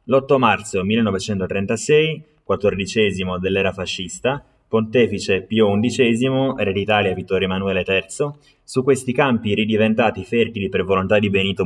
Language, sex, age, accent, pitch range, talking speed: Italian, male, 20-39, native, 100-130 Hz, 120 wpm